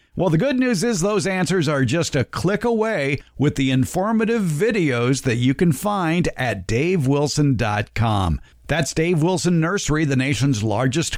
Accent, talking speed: American, 155 wpm